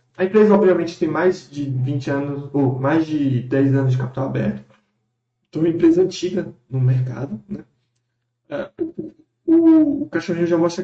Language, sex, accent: Portuguese, male, Brazilian